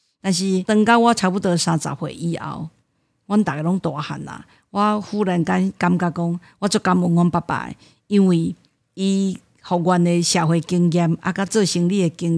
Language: Chinese